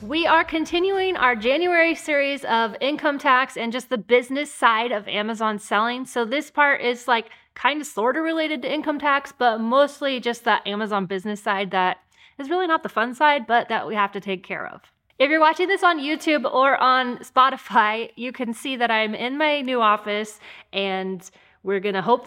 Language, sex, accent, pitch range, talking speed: English, female, American, 215-280 Hz, 200 wpm